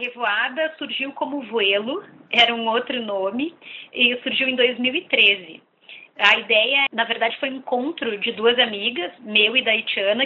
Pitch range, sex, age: 215-250 Hz, female, 20-39